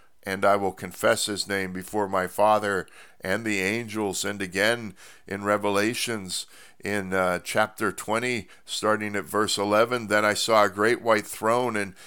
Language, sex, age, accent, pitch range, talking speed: English, male, 50-69, American, 100-125 Hz, 160 wpm